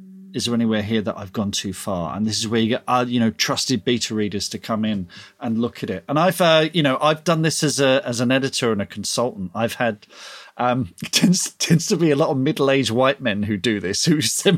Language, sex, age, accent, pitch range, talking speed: English, male, 40-59, British, 125-165 Hz, 260 wpm